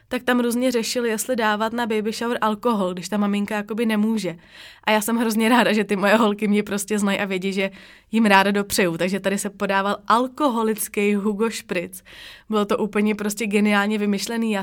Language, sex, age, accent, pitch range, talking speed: Czech, female, 20-39, native, 200-225 Hz, 190 wpm